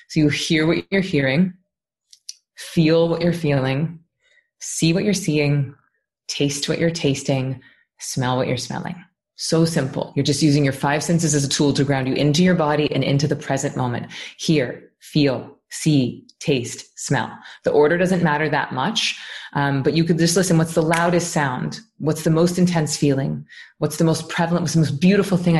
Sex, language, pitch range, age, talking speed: female, English, 145-175 Hz, 20-39, 185 wpm